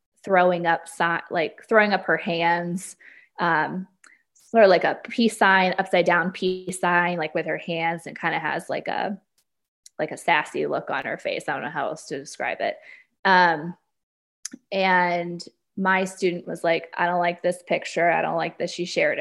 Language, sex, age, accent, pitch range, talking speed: English, female, 20-39, American, 170-195 Hz, 185 wpm